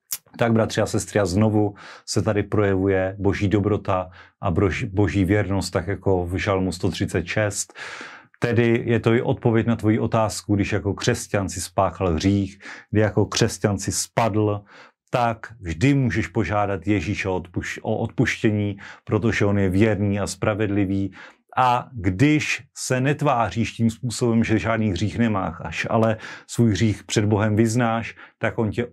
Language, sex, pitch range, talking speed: Slovak, male, 95-115 Hz, 150 wpm